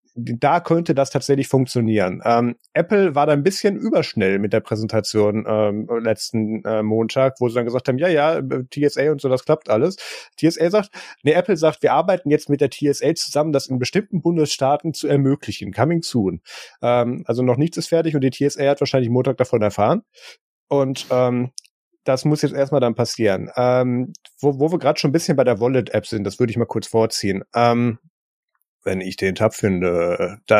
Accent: German